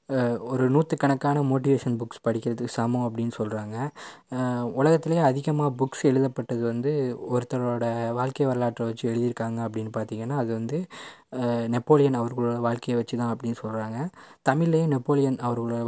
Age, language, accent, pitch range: 20-39, Tamil, native, 120-140 Hz